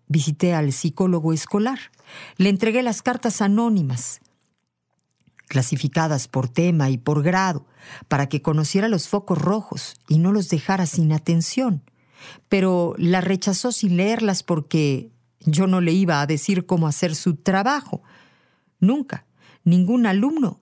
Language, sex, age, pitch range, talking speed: Spanish, female, 50-69, 150-200 Hz, 135 wpm